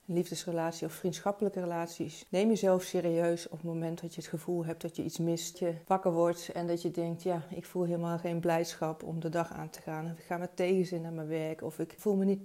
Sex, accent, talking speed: female, Dutch, 245 wpm